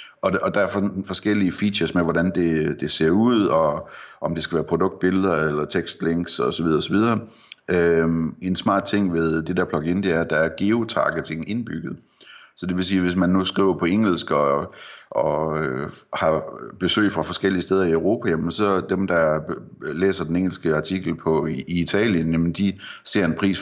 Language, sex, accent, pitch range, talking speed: Danish, male, native, 80-95 Hz, 180 wpm